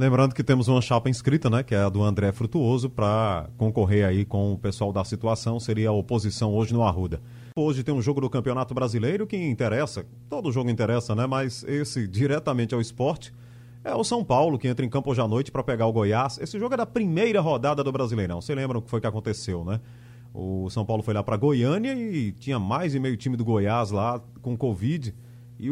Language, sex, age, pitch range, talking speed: Portuguese, male, 30-49, 115-140 Hz, 225 wpm